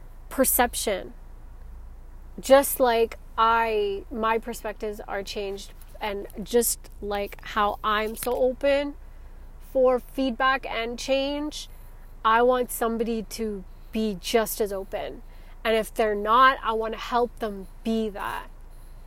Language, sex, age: English, female, 20-39